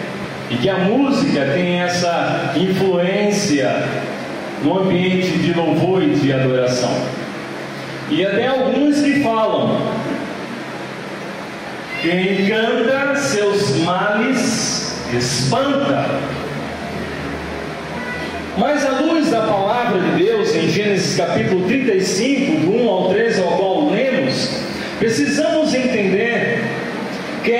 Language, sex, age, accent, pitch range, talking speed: Portuguese, male, 40-59, Brazilian, 185-255 Hz, 100 wpm